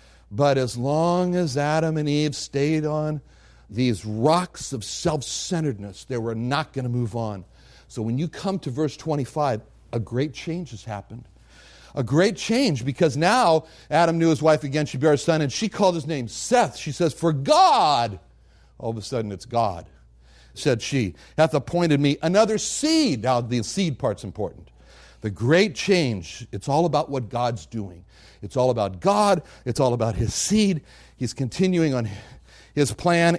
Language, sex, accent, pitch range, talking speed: English, male, American, 110-155 Hz, 175 wpm